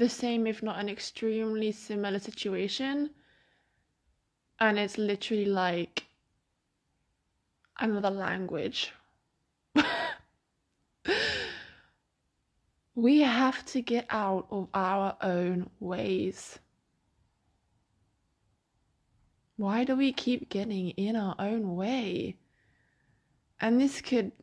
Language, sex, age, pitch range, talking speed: English, female, 20-39, 185-225 Hz, 85 wpm